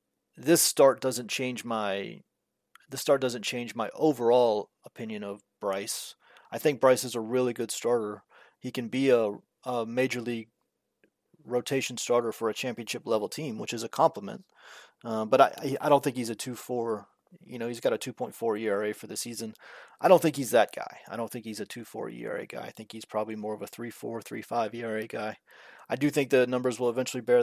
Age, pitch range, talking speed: 30-49, 115-130 Hz, 215 wpm